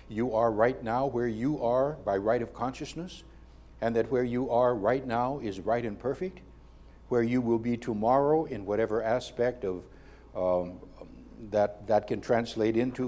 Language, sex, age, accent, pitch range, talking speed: English, male, 60-79, American, 100-130 Hz, 170 wpm